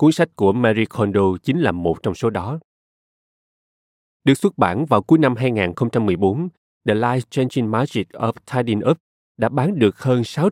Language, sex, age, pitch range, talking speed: Vietnamese, male, 20-39, 100-140 Hz, 165 wpm